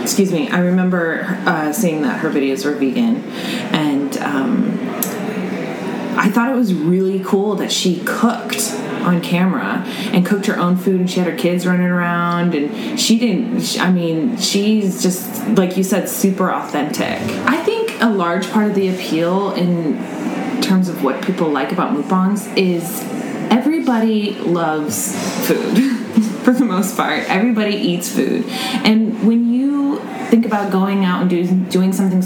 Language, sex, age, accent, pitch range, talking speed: English, female, 20-39, American, 180-230 Hz, 160 wpm